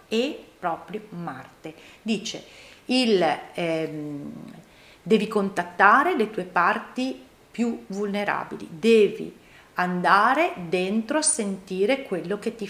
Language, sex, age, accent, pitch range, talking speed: Italian, female, 40-59, native, 175-220 Hz, 95 wpm